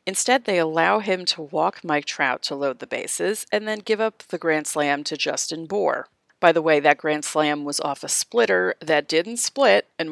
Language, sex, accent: English, female, American